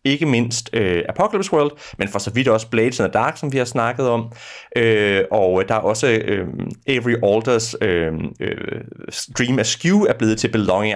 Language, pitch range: Danish, 110-150 Hz